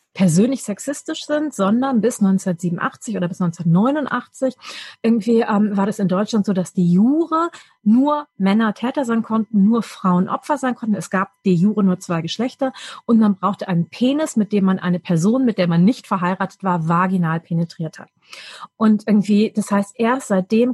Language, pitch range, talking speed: German, 190-230 Hz, 175 wpm